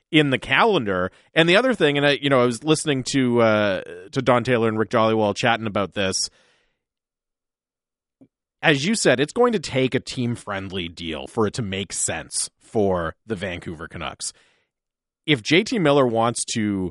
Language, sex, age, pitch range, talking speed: English, male, 30-49, 105-140 Hz, 180 wpm